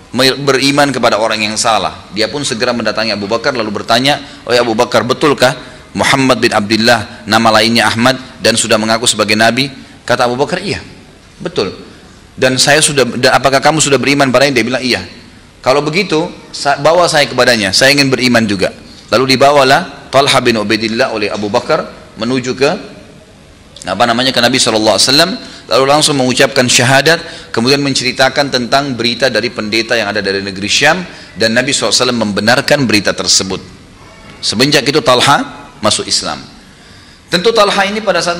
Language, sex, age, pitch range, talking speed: Indonesian, male, 30-49, 115-145 Hz, 160 wpm